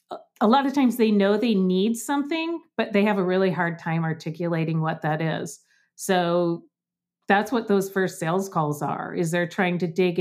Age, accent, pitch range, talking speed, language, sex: 40-59, American, 180-220 Hz, 195 wpm, English, female